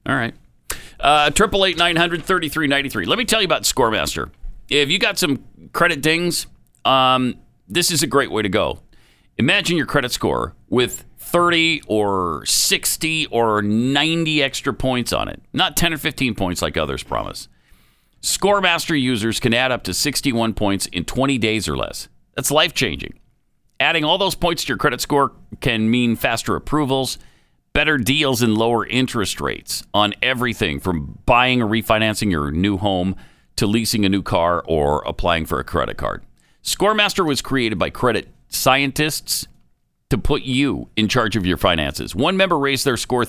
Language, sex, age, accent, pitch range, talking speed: English, male, 50-69, American, 110-155 Hz, 165 wpm